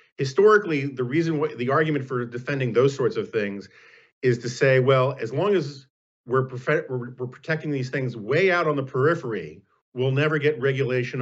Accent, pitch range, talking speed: American, 120-150 Hz, 170 wpm